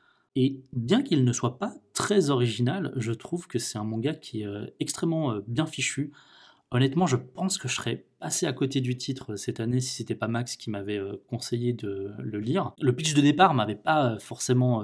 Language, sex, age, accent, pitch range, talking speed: French, male, 20-39, French, 110-130 Hz, 200 wpm